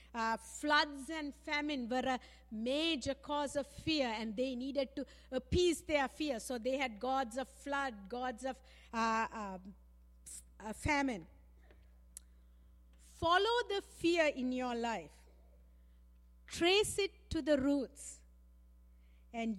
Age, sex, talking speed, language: 50-69, female, 130 wpm, English